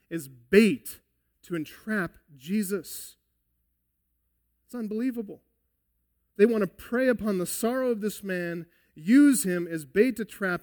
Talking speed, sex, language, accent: 130 wpm, male, English, American